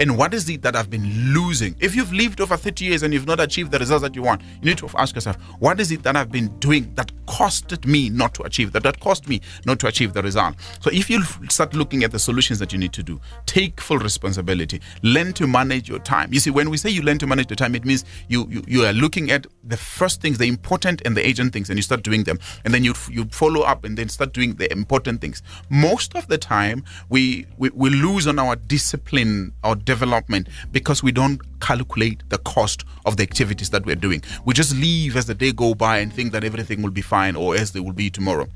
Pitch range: 100-145 Hz